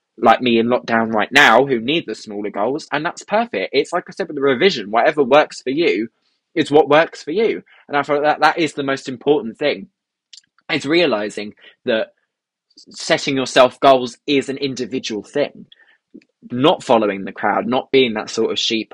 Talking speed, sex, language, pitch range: 190 wpm, male, English, 115-160 Hz